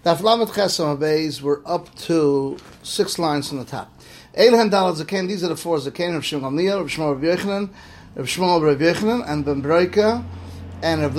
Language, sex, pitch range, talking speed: English, male, 145-195 Hz, 125 wpm